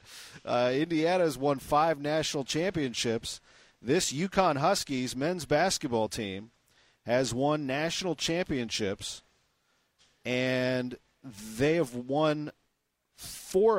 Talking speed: 95 wpm